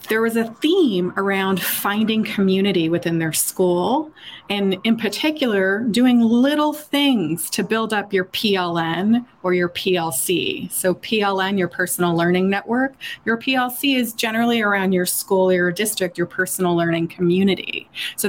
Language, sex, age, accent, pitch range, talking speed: English, female, 30-49, American, 185-230 Hz, 150 wpm